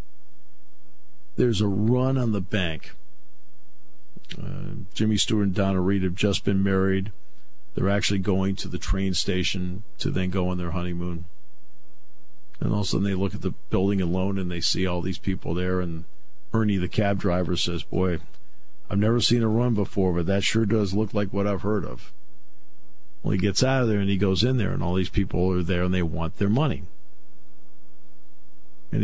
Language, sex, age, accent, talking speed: English, male, 50-69, American, 190 wpm